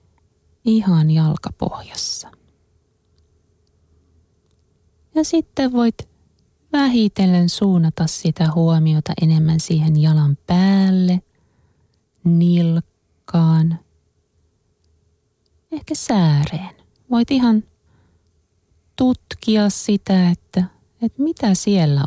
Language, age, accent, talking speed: Finnish, 30-49, native, 65 wpm